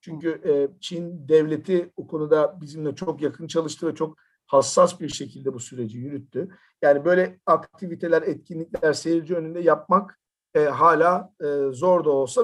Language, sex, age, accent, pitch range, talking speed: Turkish, male, 50-69, native, 145-180 Hz, 150 wpm